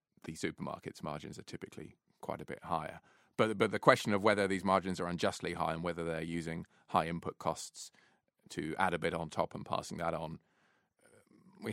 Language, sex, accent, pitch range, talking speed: English, male, British, 85-110 Hz, 195 wpm